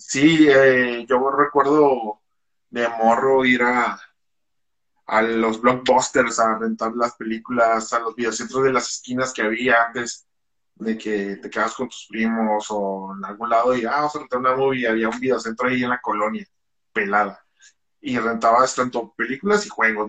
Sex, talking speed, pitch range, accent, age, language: male, 165 wpm, 115-145 Hz, Mexican, 20-39, Spanish